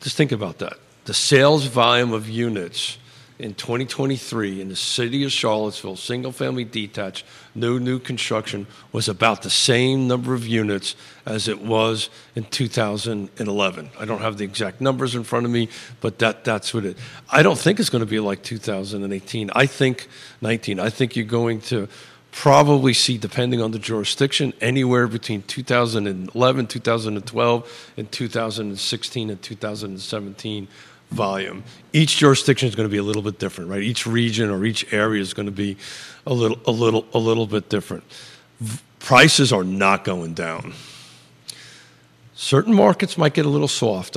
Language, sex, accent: English, male, American